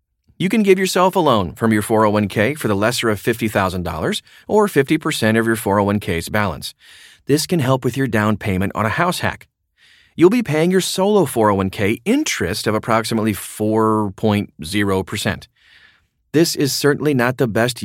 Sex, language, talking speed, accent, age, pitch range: male, English, 160 wpm, American, 30-49, 100-140 Hz